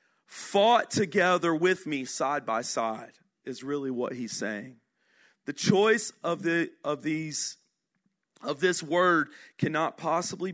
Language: English